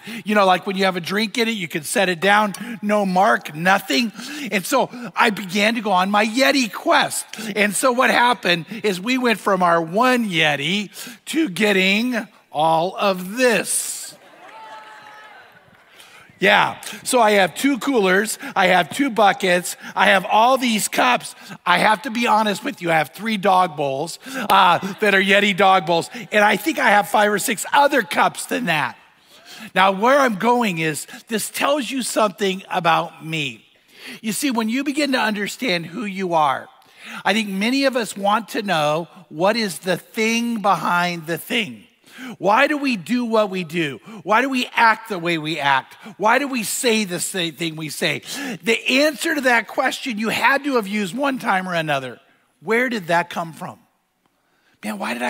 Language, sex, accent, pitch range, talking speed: English, male, American, 185-240 Hz, 185 wpm